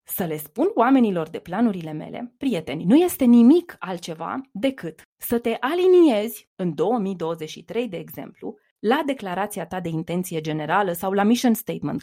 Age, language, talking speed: 20-39, Romanian, 150 wpm